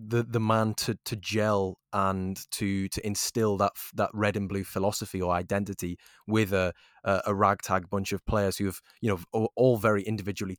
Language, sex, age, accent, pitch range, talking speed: English, male, 20-39, British, 95-110 Hz, 185 wpm